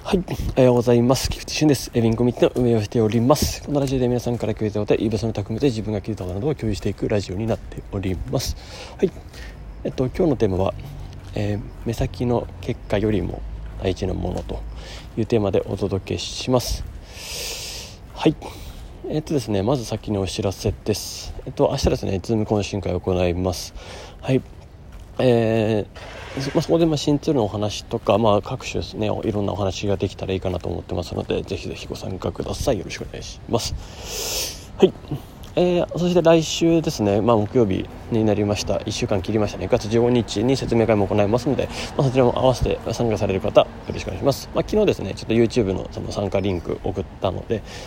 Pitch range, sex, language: 95-120 Hz, male, Japanese